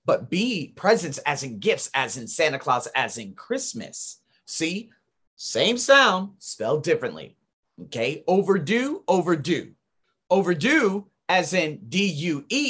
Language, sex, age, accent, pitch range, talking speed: English, male, 30-49, American, 145-215 Hz, 120 wpm